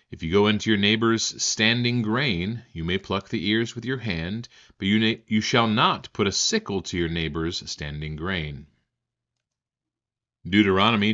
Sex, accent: male, American